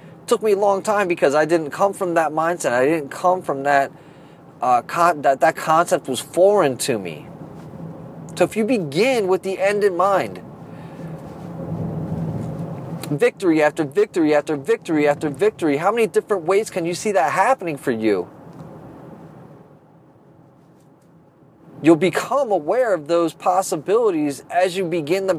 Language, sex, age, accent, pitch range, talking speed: English, male, 30-49, American, 160-190 Hz, 145 wpm